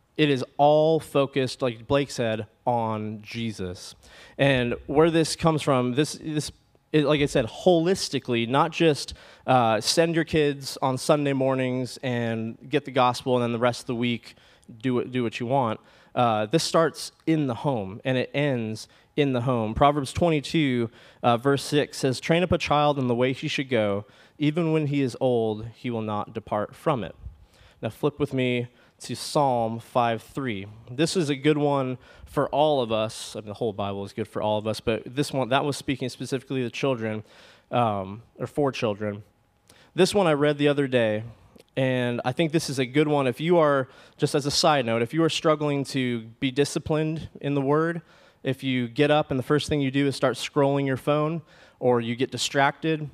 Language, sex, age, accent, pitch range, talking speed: English, male, 20-39, American, 120-150 Hz, 200 wpm